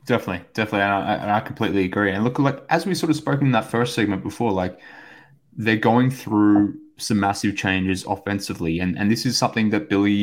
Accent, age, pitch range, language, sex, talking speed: Australian, 20-39, 95-110 Hz, English, male, 205 wpm